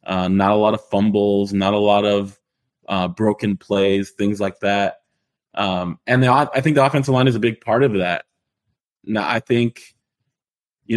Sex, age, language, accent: male, 20-39, English, American